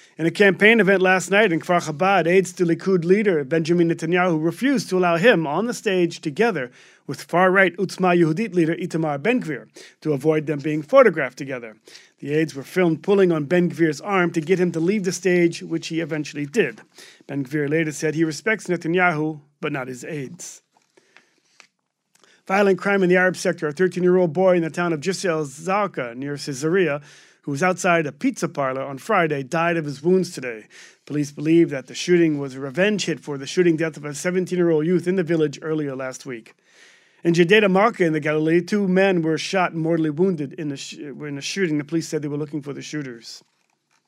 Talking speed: 195 wpm